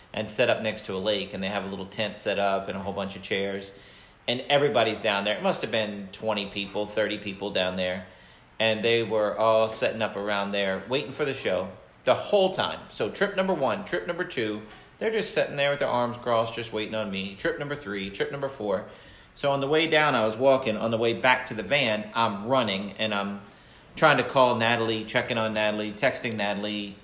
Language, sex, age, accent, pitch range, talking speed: English, male, 40-59, American, 100-125 Hz, 230 wpm